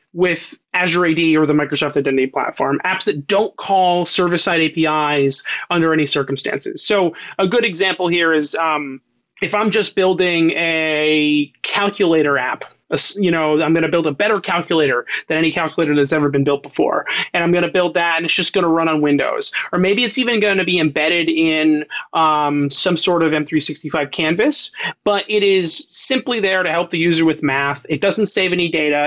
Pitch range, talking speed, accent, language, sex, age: 155-205 Hz, 195 wpm, American, English, male, 30-49